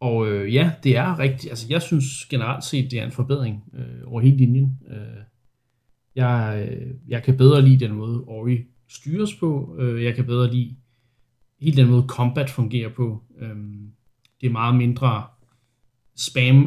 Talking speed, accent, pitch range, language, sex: 175 wpm, native, 120-130 Hz, Danish, male